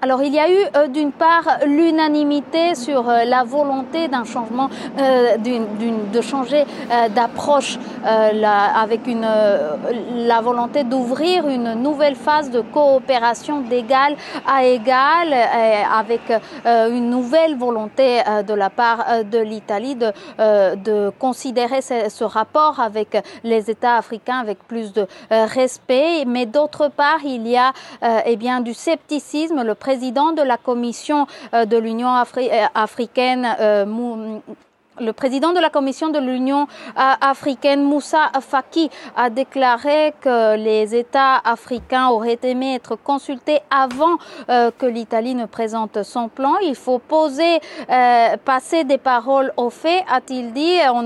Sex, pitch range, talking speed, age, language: female, 230-285 Hz, 135 wpm, 30-49, French